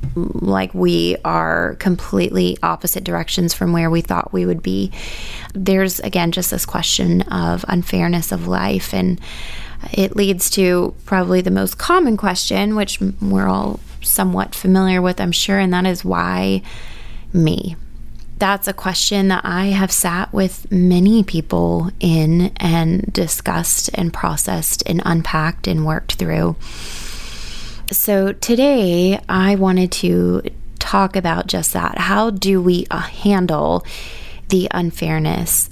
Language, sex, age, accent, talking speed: English, female, 20-39, American, 135 wpm